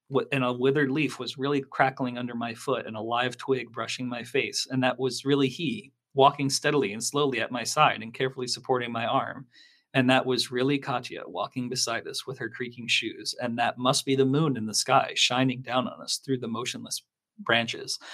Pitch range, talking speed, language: 115-135 Hz, 210 wpm, English